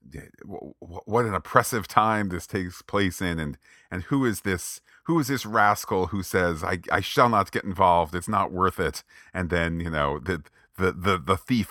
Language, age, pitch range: English, 40-59, 80-100 Hz